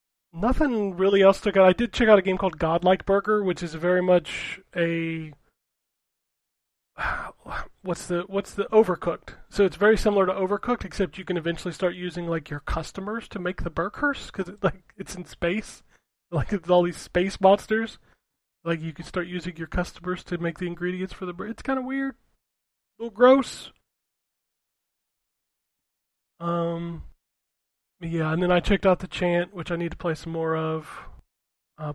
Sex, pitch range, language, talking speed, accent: male, 170-200 Hz, English, 180 wpm, American